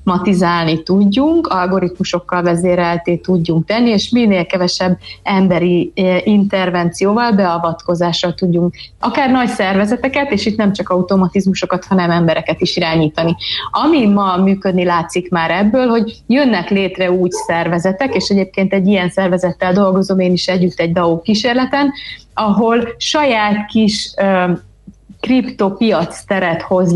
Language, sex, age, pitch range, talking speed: Hungarian, female, 30-49, 180-210 Hz, 120 wpm